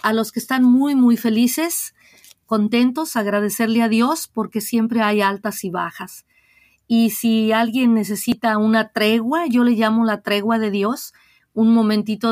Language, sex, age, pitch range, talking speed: English, female, 40-59, 205-235 Hz, 155 wpm